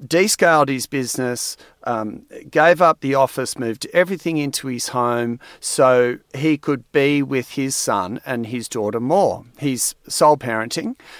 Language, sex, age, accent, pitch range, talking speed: English, male, 40-59, Australian, 120-155 Hz, 145 wpm